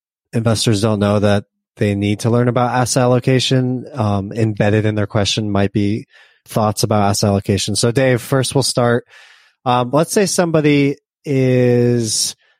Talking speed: 150 wpm